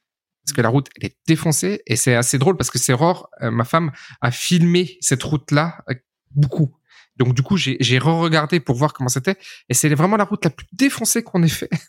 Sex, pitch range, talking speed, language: male, 120-155 Hz, 215 wpm, French